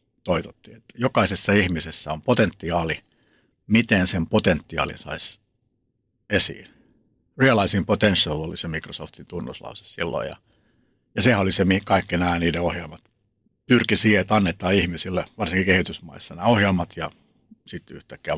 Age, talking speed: 60-79, 130 wpm